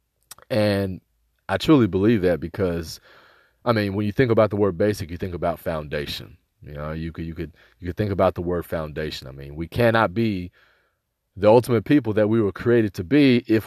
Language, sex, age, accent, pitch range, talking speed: English, male, 30-49, American, 105-130 Hz, 205 wpm